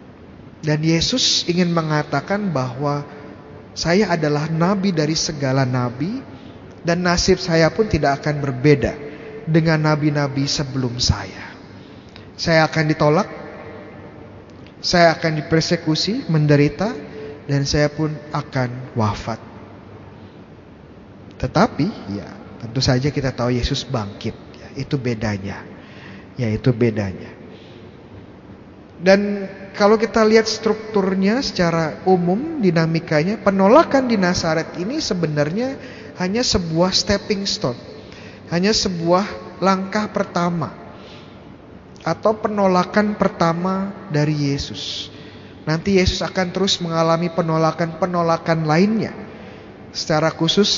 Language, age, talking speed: Indonesian, 20-39, 100 wpm